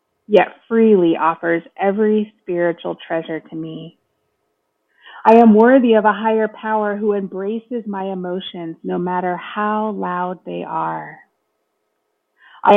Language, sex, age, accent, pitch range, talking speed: English, female, 30-49, American, 170-205 Hz, 120 wpm